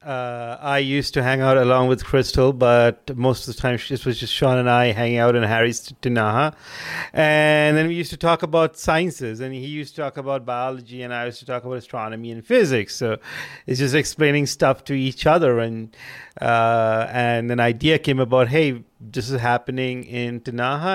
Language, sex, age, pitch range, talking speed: English, male, 30-49, 125-150 Hz, 200 wpm